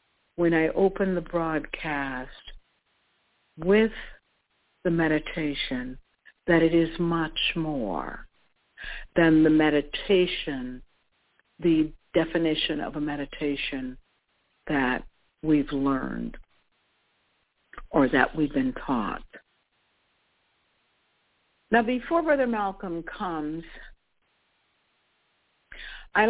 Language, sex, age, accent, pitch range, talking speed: English, female, 60-79, American, 155-205 Hz, 80 wpm